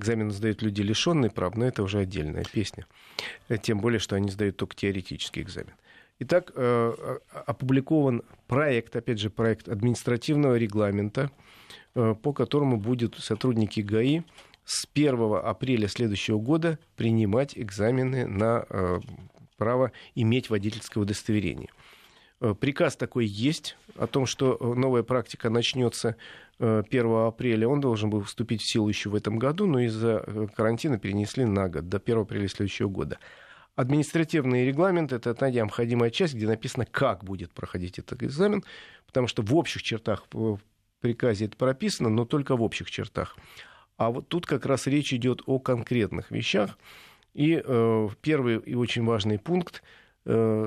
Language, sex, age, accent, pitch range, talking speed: Russian, male, 40-59, native, 110-130 Hz, 140 wpm